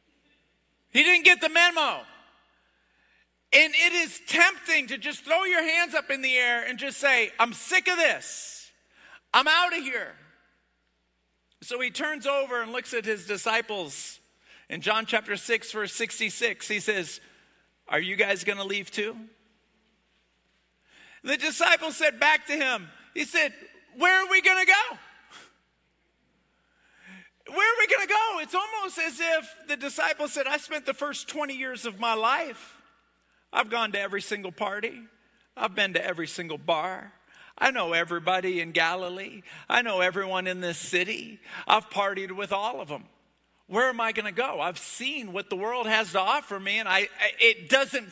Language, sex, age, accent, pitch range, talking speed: English, male, 50-69, American, 210-320 Hz, 170 wpm